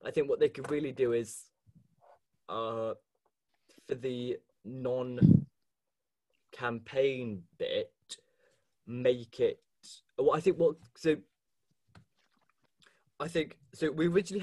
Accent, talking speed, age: British, 105 wpm, 20-39